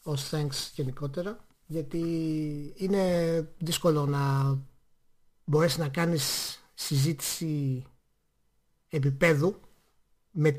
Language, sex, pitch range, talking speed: Greek, male, 140-175 Hz, 75 wpm